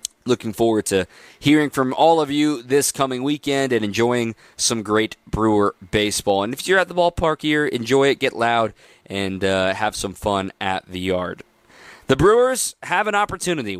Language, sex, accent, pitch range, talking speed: English, male, American, 105-145 Hz, 180 wpm